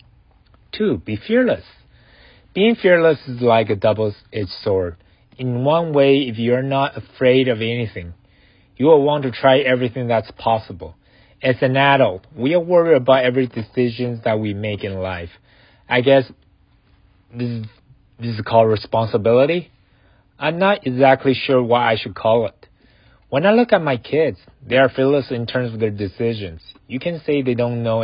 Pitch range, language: 100-135 Hz, Chinese